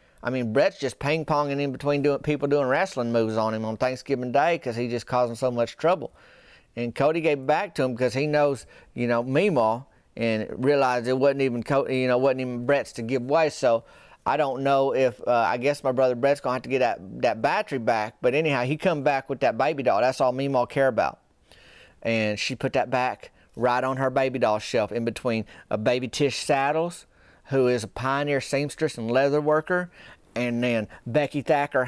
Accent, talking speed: American, 215 wpm